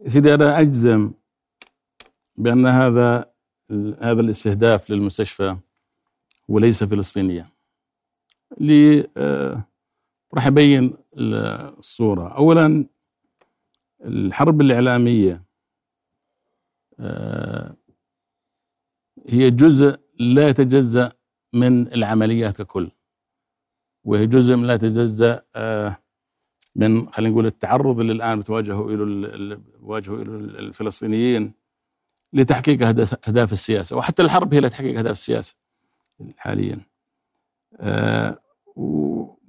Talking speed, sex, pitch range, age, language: 75 wpm, male, 105-135 Hz, 50-69, Arabic